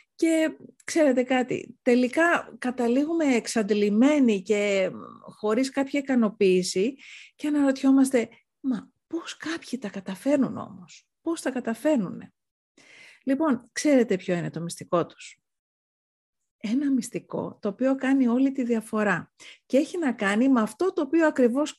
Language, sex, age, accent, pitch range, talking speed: Greek, female, 40-59, native, 195-265 Hz, 125 wpm